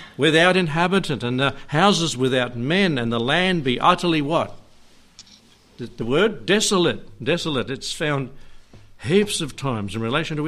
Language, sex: English, male